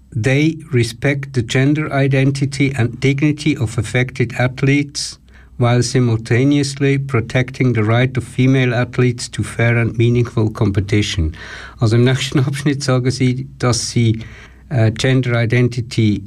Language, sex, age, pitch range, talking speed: German, male, 60-79, 115-140 Hz, 125 wpm